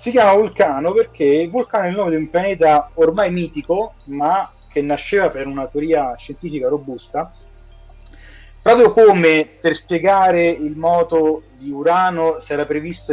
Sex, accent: male, native